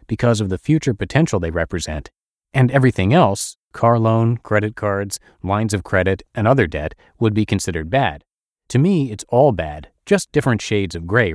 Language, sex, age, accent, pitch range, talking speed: English, male, 30-49, American, 95-125 Hz, 180 wpm